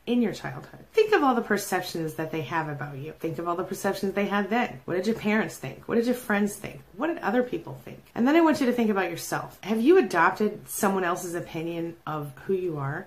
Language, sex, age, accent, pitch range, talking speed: English, female, 30-49, American, 160-220 Hz, 255 wpm